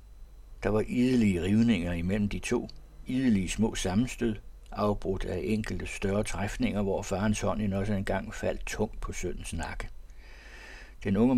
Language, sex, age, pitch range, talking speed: Danish, male, 60-79, 90-110 Hz, 140 wpm